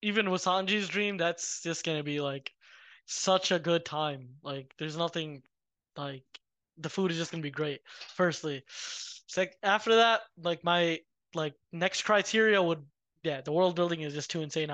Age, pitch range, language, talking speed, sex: 20-39, 155-185 Hz, English, 180 wpm, male